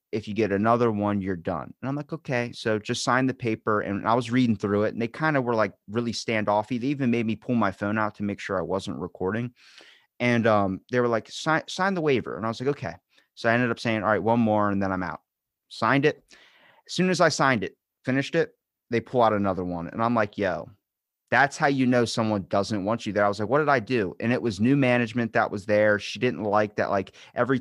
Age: 30-49